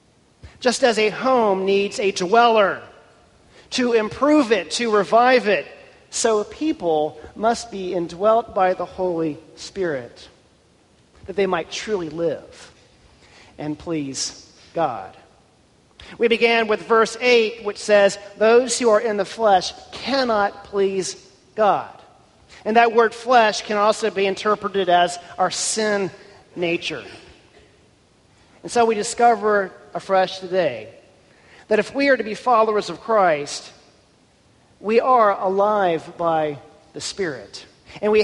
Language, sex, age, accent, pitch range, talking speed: English, male, 40-59, American, 185-230 Hz, 125 wpm